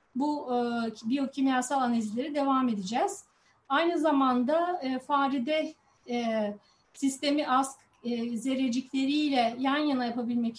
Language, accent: Turkish, native